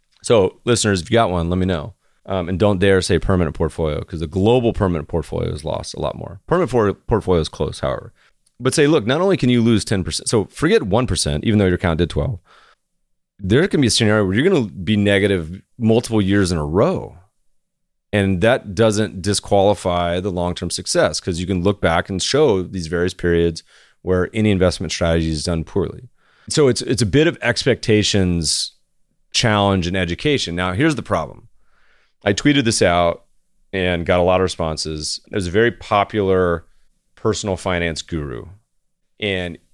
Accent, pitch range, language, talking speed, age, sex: American, 90-110 Hz, English, 185 wpm, 30-49, male